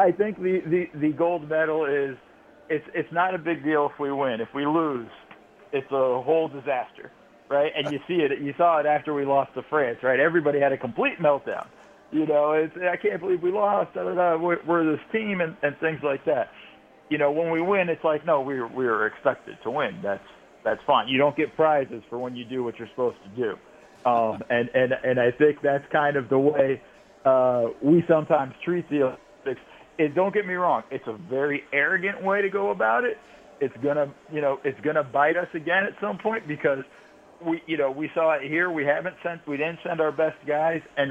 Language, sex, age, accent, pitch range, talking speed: English, male, 40-59, American, 130-165 Hz, 220 wpm